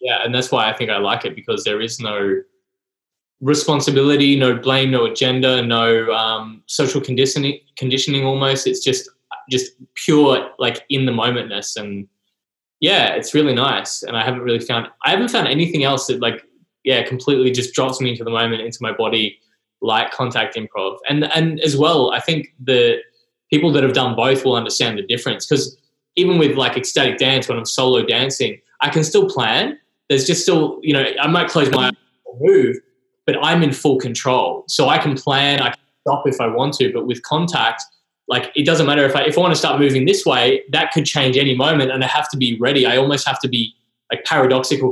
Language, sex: English, male